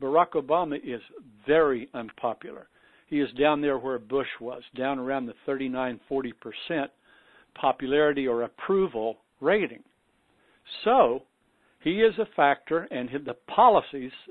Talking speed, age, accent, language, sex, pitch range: 120 wpm, 60-79, American, English, male, 125-155 Hz